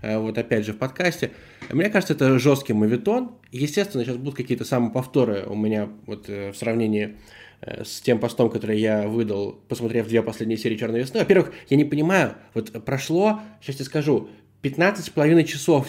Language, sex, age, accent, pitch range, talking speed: Russian, male, 20-39, native, 115-155 Hz, 165 wpm